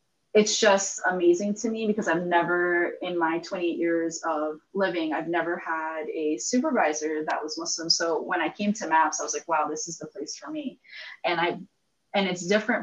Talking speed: 200 wpm